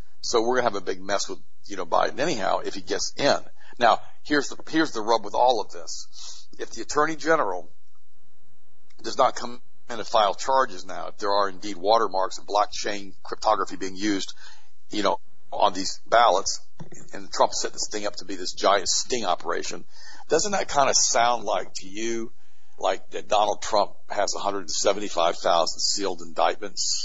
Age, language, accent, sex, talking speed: 60-79, English, American, male, 190 wpm